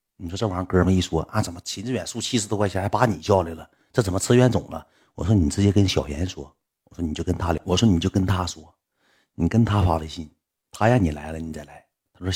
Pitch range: 85-115 Hz